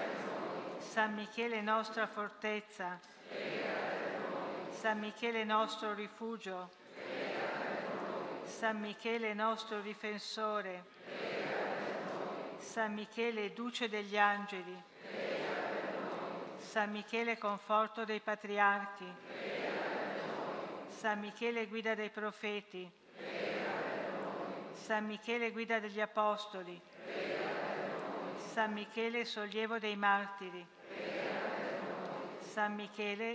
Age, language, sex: 50-69, Italian, female